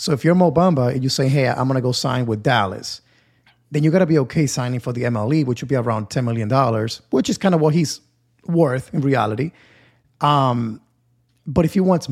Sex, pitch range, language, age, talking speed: male, 120-150 Hz, English, 30-49, 225 wpm